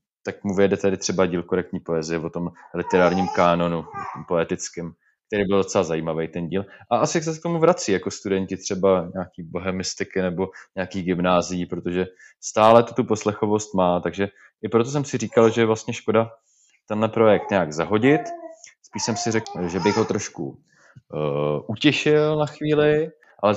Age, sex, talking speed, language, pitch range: 20-39, male, 170 wpm, Czech, 85-105 Hz